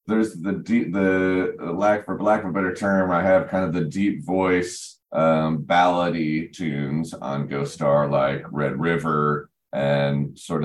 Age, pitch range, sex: 30-49, 75-95 Hz, male